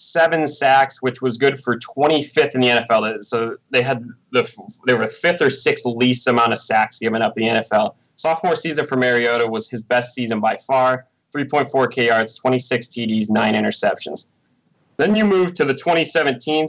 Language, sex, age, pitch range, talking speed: English, male, 20-39, 120-150 Hz, 185 wpm